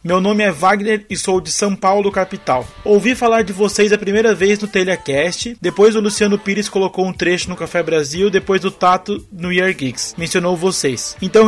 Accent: Brazilian